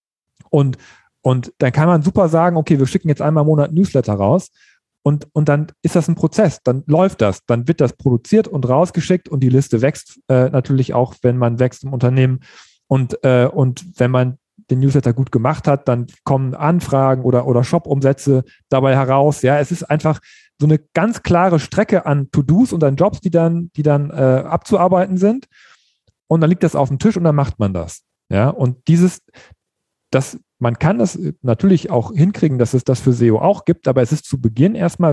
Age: 40-59